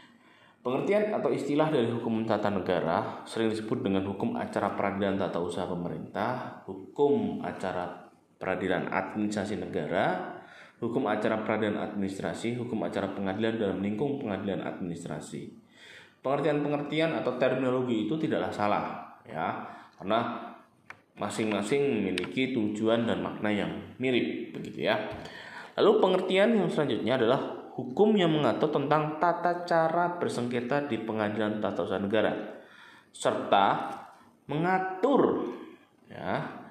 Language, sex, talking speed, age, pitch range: Indonesian, male, 115 wpm, 20-39, 105-155 Hz